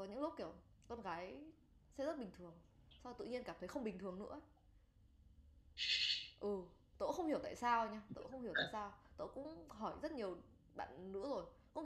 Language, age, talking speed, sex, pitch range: Vietnamese, 20-39, 200 wpm, female, 175-230 Hz